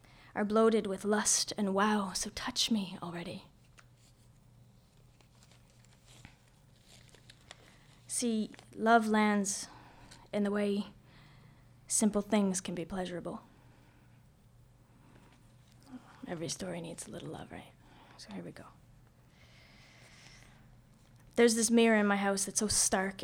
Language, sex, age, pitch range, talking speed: English, female, 20-39, 185-220 Hz, 105 wpm